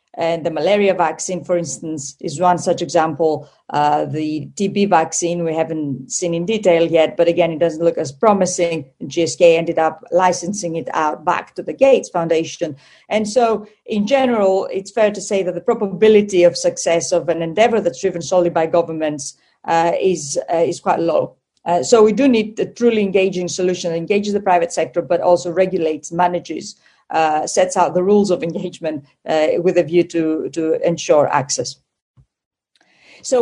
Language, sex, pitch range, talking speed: English, female, 170-195 Hz, 180 wpm